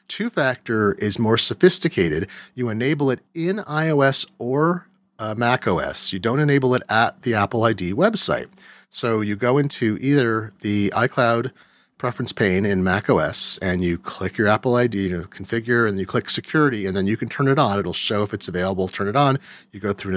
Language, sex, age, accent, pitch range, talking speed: English, male, 30-49, American, 110-160 Hz, 185 wpm